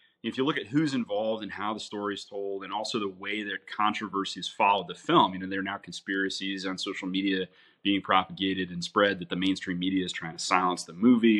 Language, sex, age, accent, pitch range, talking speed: English, male, 30-49, American, 100-115 Hz, 230 wpm